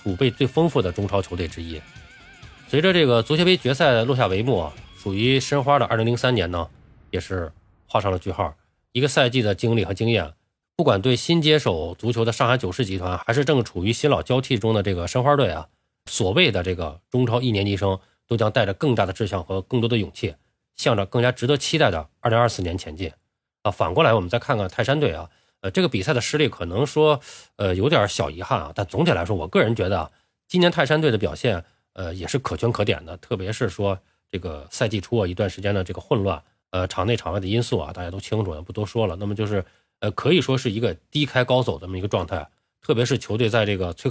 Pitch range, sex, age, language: 95-125 Hz, male, 20-39, Chinese